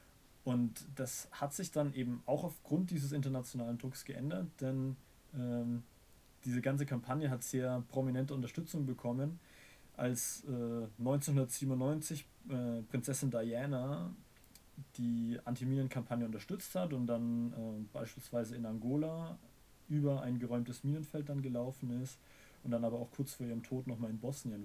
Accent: German